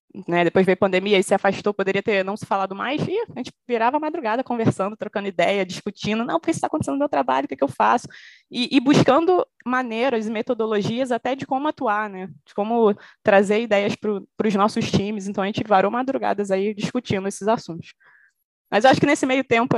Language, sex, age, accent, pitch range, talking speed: Portuguese, female, 20-39, Brazilian, 190-235 Hz, 215 wpm